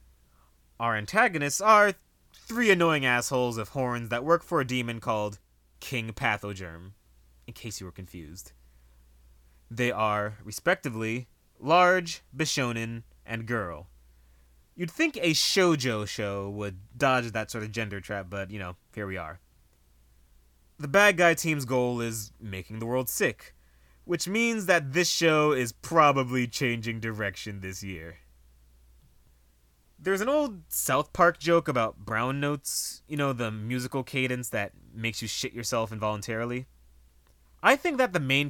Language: English